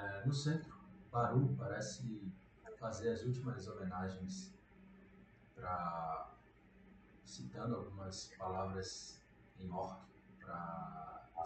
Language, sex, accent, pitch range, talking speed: Portuguese, male, Brazilian, 95-130 Hz, 80 wpm